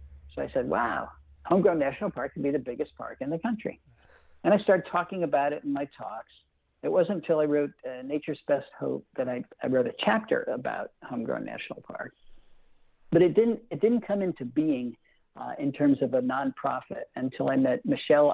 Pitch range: 135-185 Hz